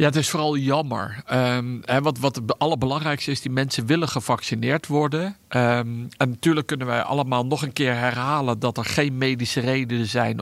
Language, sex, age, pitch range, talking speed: Dutch, male, 50-69, 120-145 Hz, 190 wpm